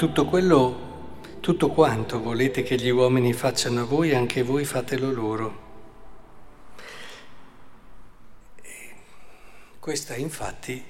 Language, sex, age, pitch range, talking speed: Italian, male, 50-69, 125-165 Hz, 95 wpm